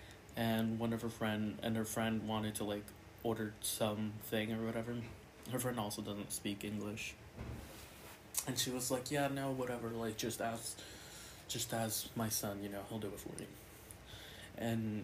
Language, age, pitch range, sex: English, 20-39, 105-115 Hz, male